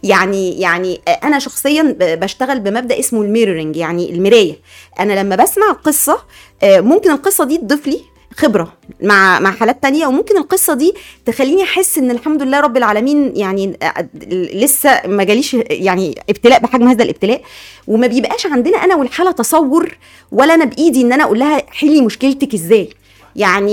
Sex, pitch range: female, 215-295 Hz